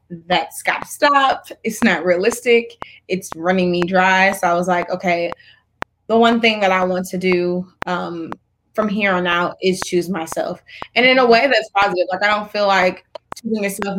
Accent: American